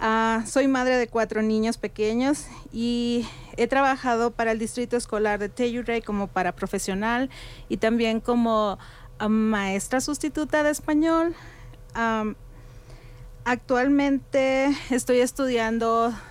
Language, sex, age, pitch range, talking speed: English, female, 40-59, 195-245 Hz, 105 wpm